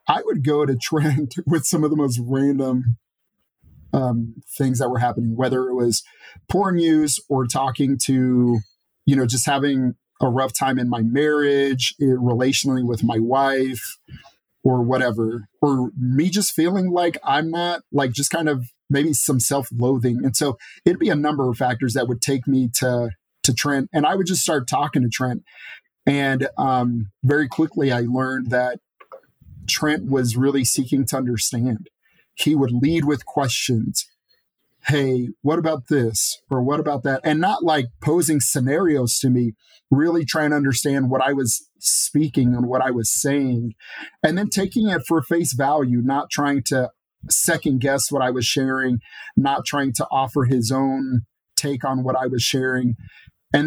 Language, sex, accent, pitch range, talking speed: English, male, American, 125-150 Hz, 170 wpm